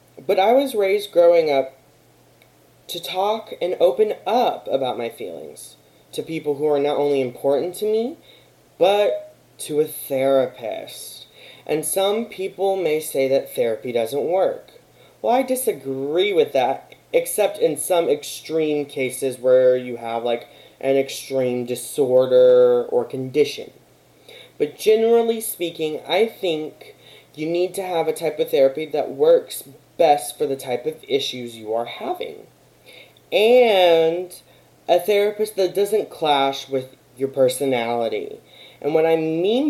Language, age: English, 20-39